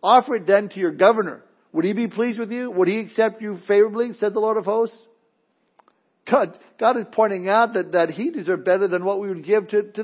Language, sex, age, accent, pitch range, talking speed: English, male, 60-79, American, 170-230 Hz, 235 wpm